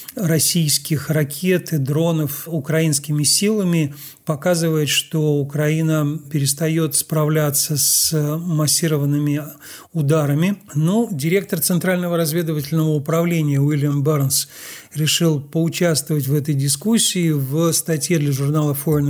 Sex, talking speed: male, 95 wpm